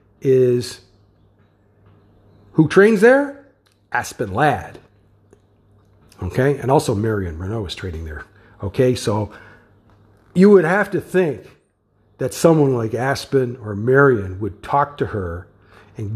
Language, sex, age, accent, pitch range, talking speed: English, male, 50-69, American, 105-170 Hz, 120 wpm